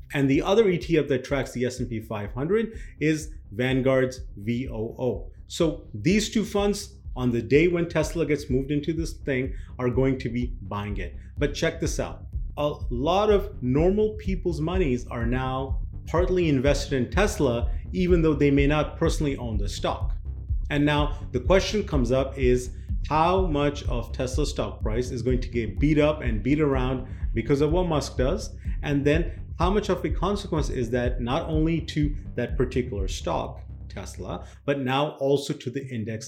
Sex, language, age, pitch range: male, English, 30-49, 115-155 Hz